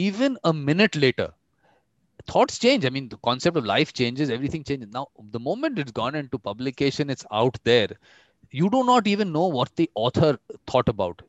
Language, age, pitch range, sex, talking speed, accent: English, 30-49, 125-175 Hz, male, 185 wpm, Indian